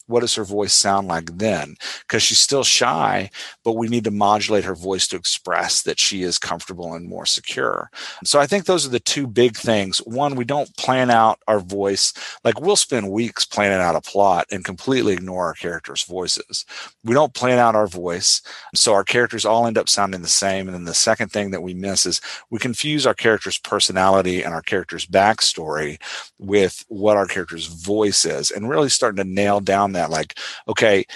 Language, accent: English, American